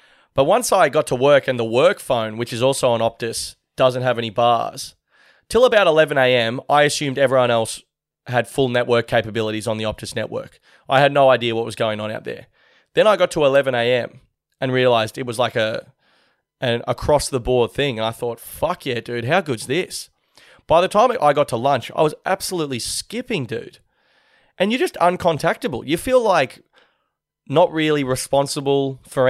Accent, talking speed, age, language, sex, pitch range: Australian, 190 wpm, 30-49, English, male, 120-150 Hz